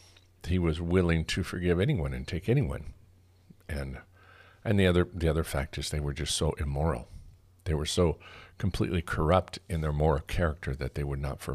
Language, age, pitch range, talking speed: English, 50-69, 75-95 Hz, 185 wpm